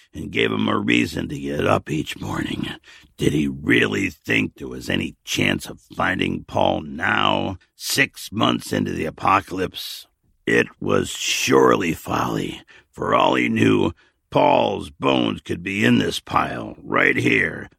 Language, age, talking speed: English, 60-79, 150 wpm